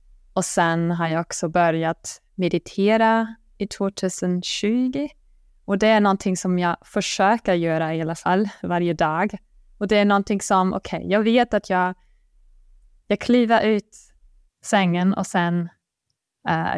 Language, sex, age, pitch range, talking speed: Swedish, female, 20-39, 165-200 Hz, 145 wpm